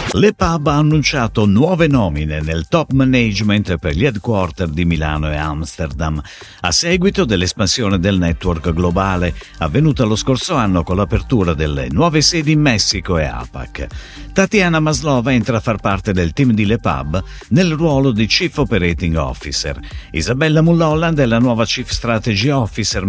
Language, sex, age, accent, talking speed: Italian, male, 50-69, native, 150 wpm